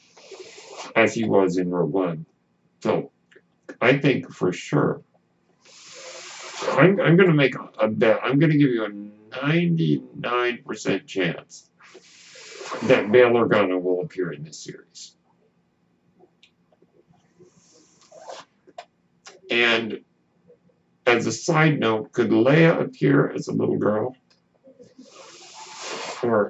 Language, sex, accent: English, male, American